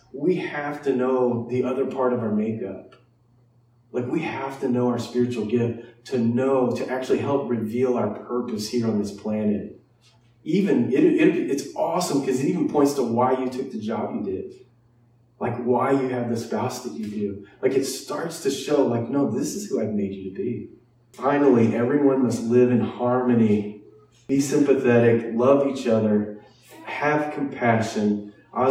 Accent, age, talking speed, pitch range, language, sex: American, 30-49, 180 wpm, 110-130 Hz, English, male